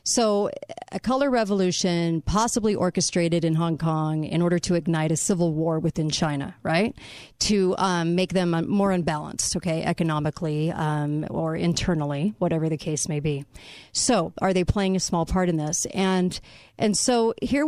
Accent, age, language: American, 40-59, English